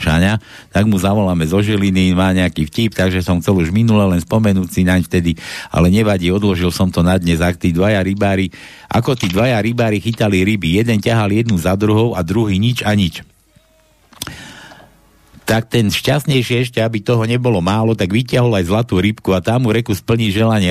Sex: male